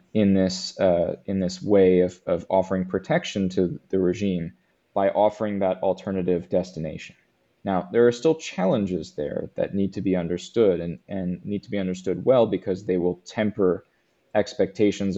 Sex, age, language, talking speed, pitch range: male, 20-39, English, 160 wpm, 90-110 Hz